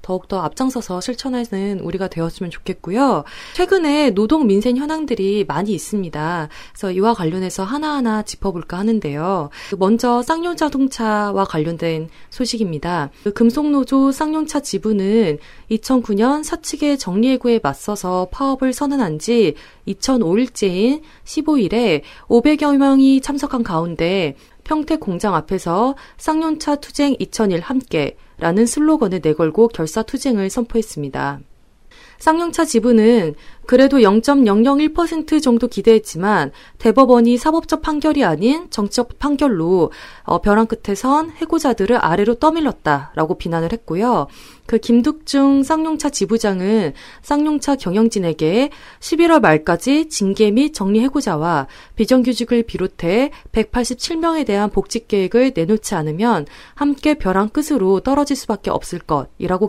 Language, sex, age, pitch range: Korean, female, 20-39, 190-280 Hz